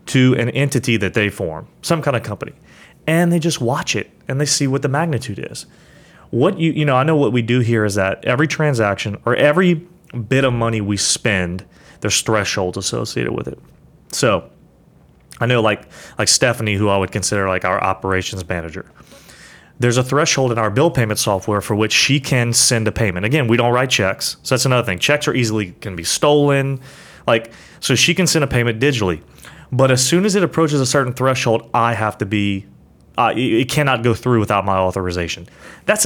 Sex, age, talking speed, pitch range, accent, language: male, 30-49, 205 wpm, 105-135 Hz, American, English